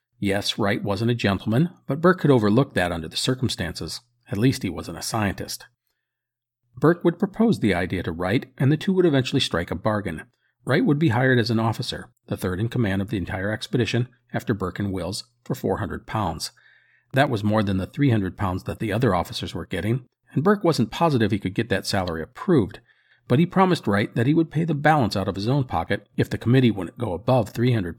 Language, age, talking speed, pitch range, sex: English, 40-59, 215 wpm, 100-135 Hz, male